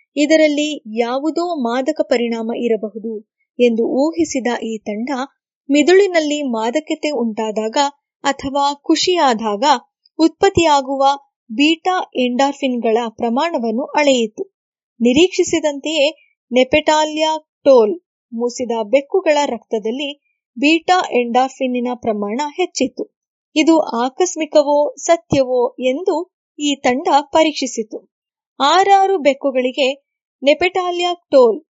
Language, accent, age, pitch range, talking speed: English, Indian, 20-39, 245-325 Hz, 75 wpm